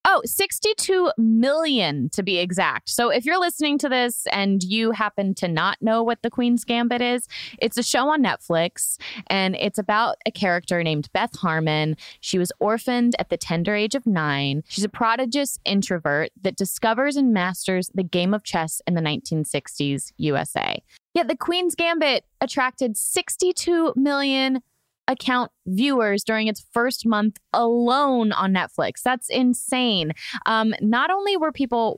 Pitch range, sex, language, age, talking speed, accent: 185-265 Hz, female, English, 20-39, 160 wpm, American